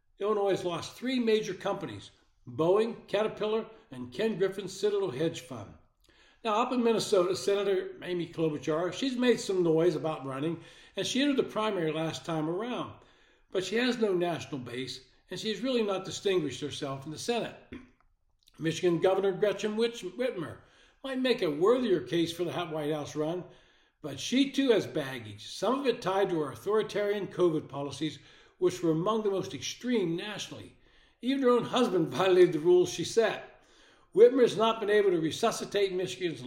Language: English